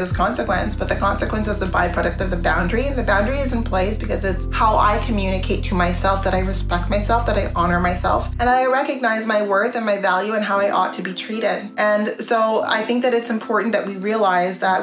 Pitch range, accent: 185-225 Hz, American